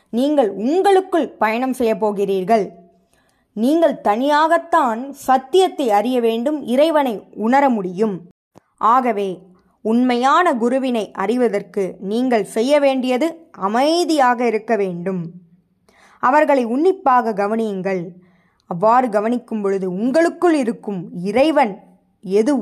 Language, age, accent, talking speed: Tamil, 20-39, native, 80 wpm